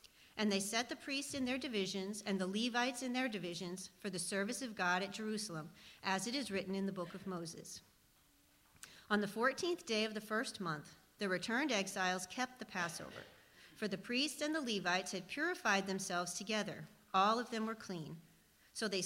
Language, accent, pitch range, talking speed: English, American, 185-240 Hz, 190 wpm